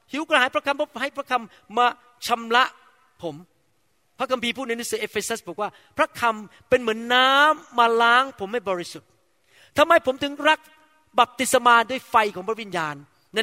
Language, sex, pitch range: Thai, male, 200-275 Hz